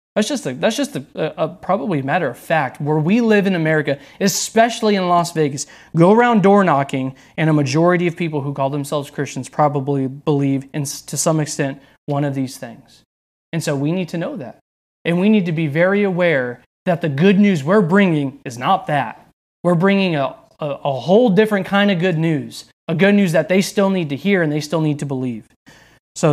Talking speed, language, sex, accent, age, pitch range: 215 wpm, English, male, American, 20-39, 145-190 Hz